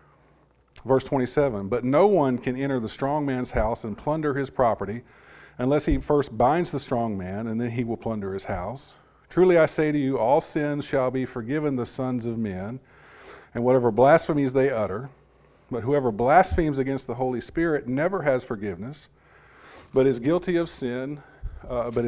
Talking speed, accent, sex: 175 wpm, American, male